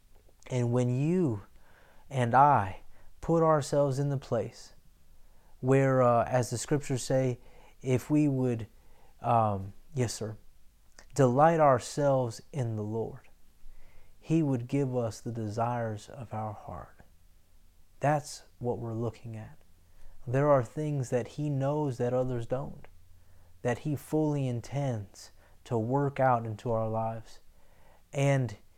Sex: male